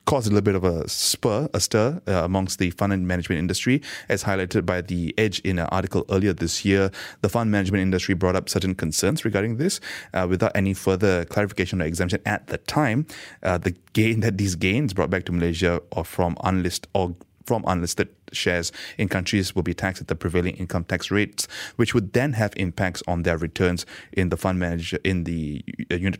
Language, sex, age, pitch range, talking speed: English, male, 20-39, 90-105 Hz, 205 wpm